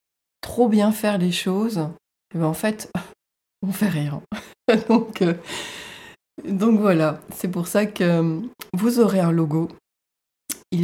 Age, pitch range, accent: 20-39, 165-195 Hz, French